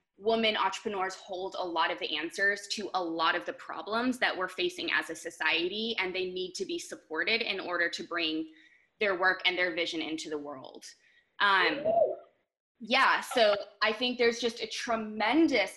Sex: female